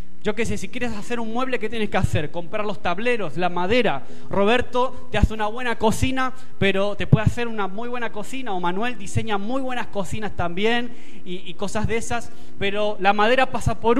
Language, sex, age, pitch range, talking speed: Spanish, male, 20-39, 180-240 Hz, 205 wpm